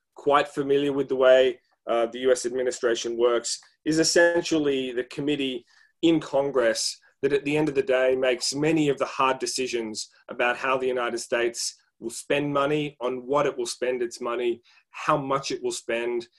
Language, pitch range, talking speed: English, 125-165 Hz, 180 wpm